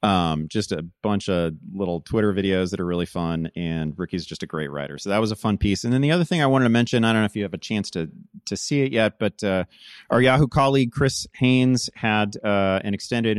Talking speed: 255 wpm